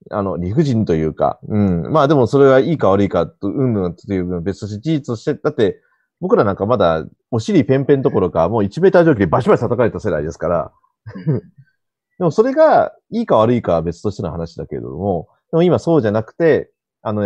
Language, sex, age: Japanese, male, 30-49